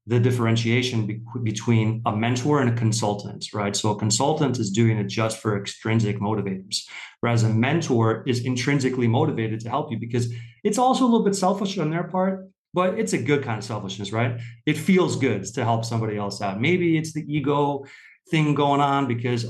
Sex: male